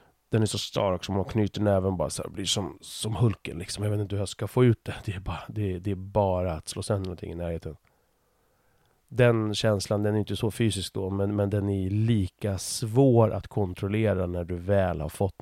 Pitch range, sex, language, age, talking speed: 90-110 Hz, male, Swedish, 30-49, 230 wpm